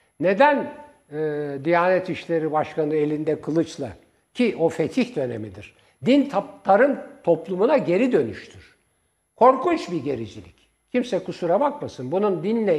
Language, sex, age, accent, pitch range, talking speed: Turkish, male, 60-79, native, 155-230 Hz, 110 wpm